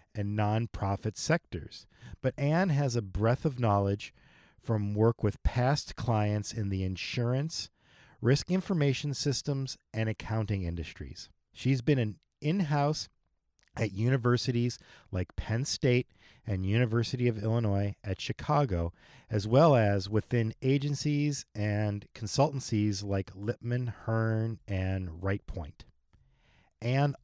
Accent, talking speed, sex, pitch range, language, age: American, 115 wpm, male, 100-125 Hz, English, 40-59